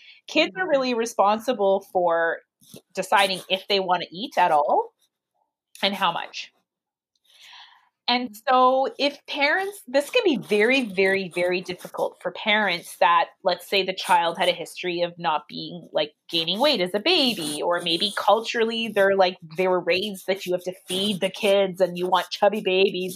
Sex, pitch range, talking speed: female, 180-230 Hz, 170 wpm